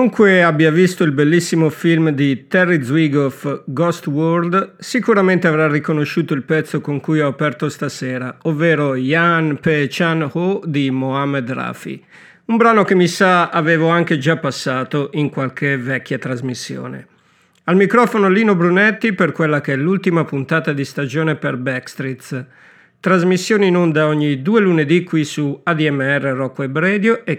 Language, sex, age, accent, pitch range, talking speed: Italian, male, 50-69, native, 140-180 Hz, 150 wpm